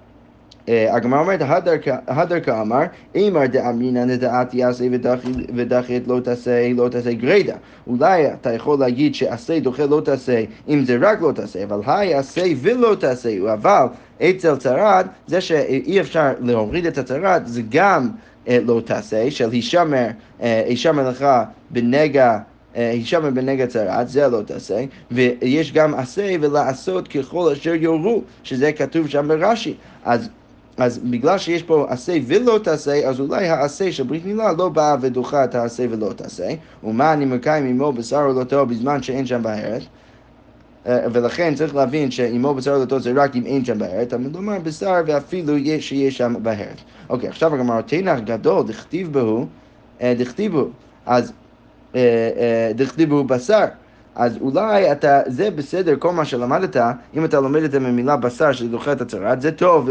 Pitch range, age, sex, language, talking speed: 120-150 Hz, 30-49, male, Hebrew, 115 wpm